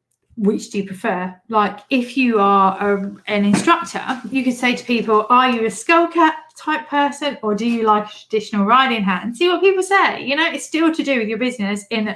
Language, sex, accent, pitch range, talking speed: English, female, British, 200-250 Hz, 220 wpm